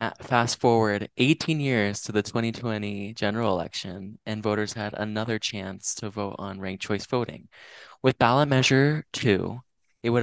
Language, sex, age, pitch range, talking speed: English, male, 20-39, 105-120 Hz, 160 wpm